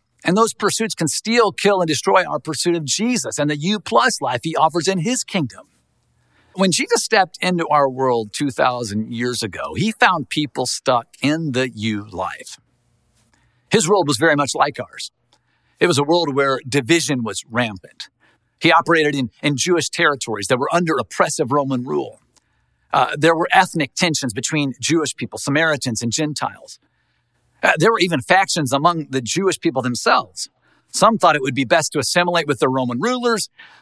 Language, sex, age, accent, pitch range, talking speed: English, male, 50-69, American, 120-175 Hz, 170 wpm